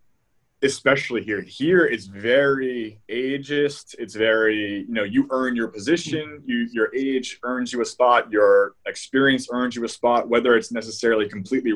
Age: 20-39